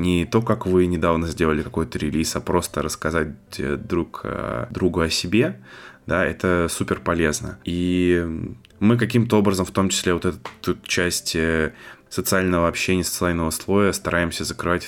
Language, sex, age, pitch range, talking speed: Russian, male, 20-39, 80-95 Hz, 140 wpm